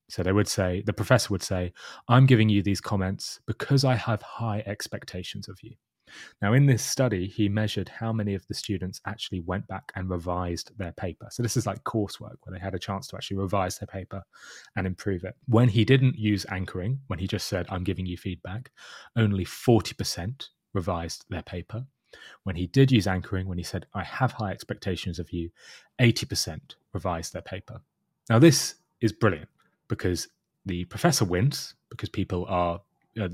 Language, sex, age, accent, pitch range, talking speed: English, male, 30-49, British, 90-115 Hz, 185 wpm